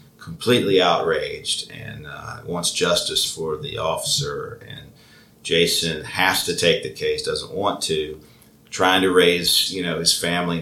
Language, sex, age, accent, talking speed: English, male, 40-59, American, 145 wpm